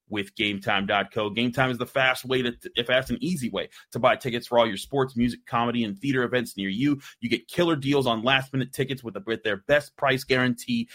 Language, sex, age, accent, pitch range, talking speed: English, male, 30-49, American, 115-145 Hz, 235 wpm